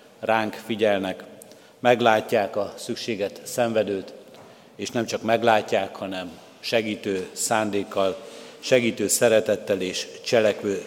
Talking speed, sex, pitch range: 95 wpm, male, 105-120 Hz